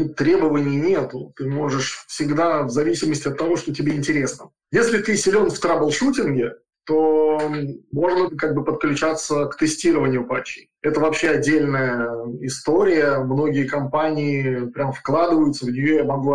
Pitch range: 135-165 Hz